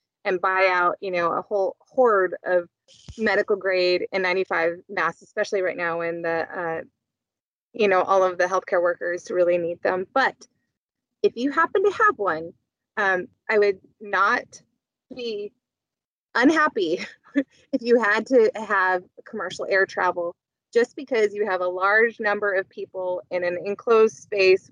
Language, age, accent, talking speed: English, 20-39, American, 155 wpm